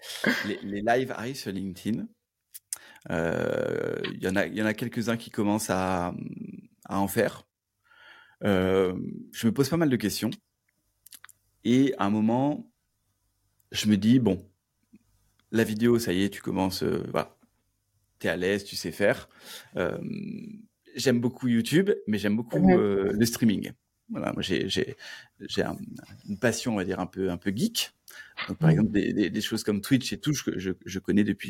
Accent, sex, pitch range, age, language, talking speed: French, male, 100-125 Hz, 30-49, French, 175 wpm